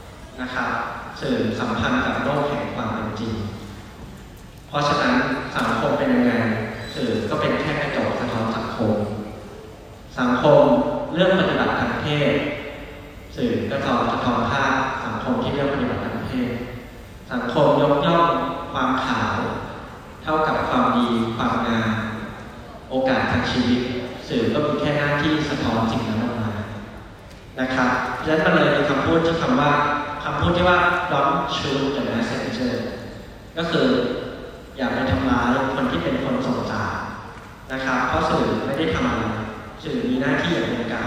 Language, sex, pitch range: Thai, male, 110-145 Hz